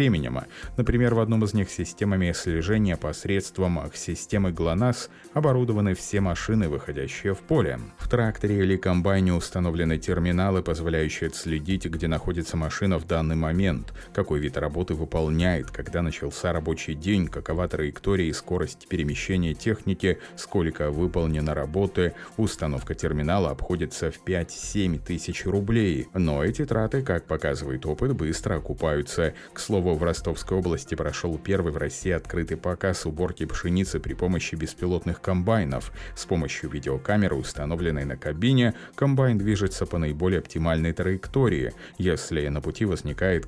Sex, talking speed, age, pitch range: male, 135 wpm, 30-49, 80-100 Hz